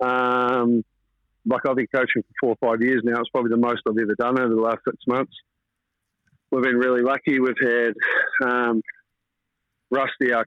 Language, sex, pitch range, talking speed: English, male, 115-130 Hz, 185 wpm